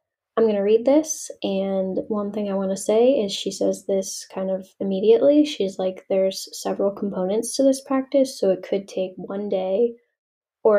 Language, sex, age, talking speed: English, female, 10-29, 190 wpm